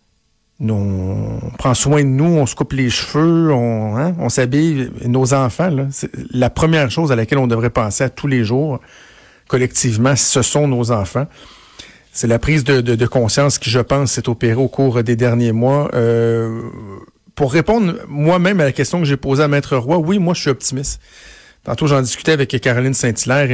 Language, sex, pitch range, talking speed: French, male, 120-145 Hz, 195 wpm